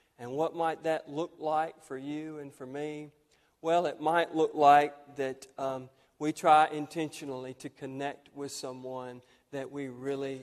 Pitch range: 130-150 Hz